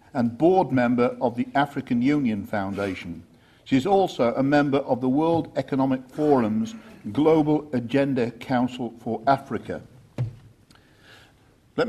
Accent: British